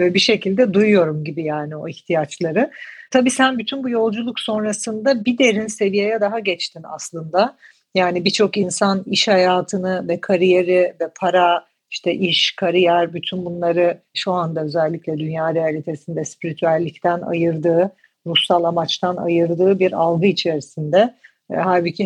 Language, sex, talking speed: Turkish, female, 130 wpm